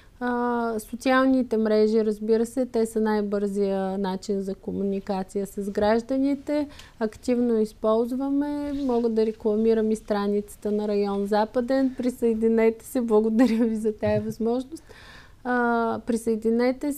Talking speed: 105 wpm